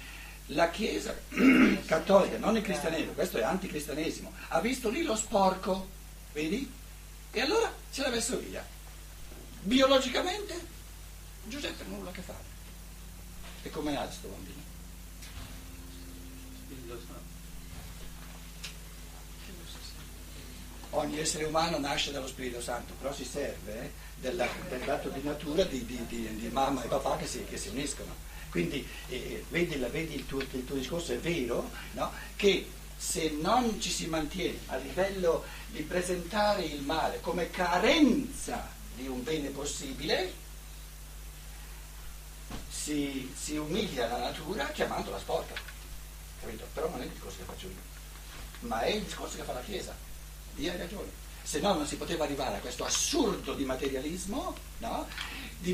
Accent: native